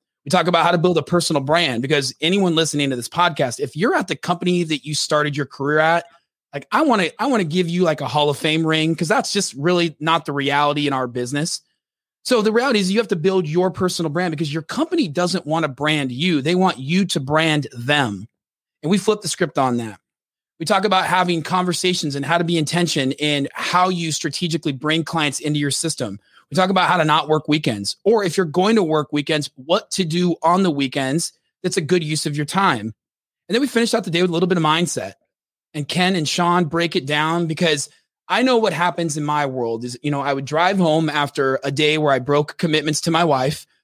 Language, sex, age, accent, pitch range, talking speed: English, male, 30-49, American, 145-180 Hz, 240 wpm